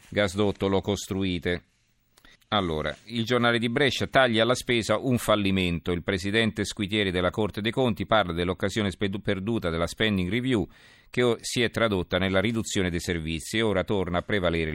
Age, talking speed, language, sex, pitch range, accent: 40-59, 165 wpm, Italian, male, 85-110 Hz, native